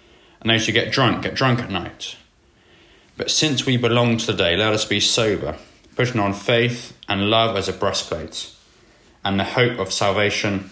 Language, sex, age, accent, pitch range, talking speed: English, male, 20-39, British, 95-120 Hz, 185 wpm